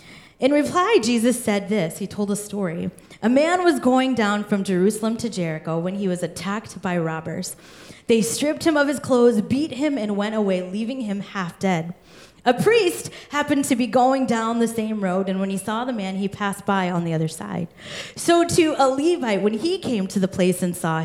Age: 30-49